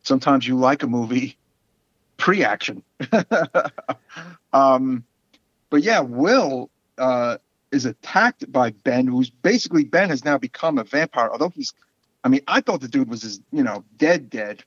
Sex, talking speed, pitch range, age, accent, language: male, 145 wpm, 115-150 Hz, 50-69, American, English